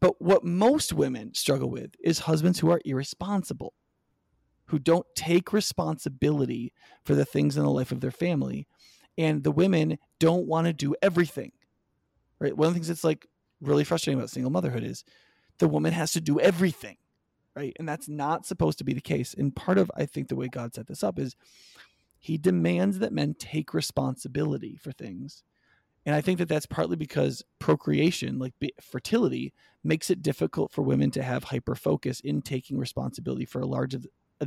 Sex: male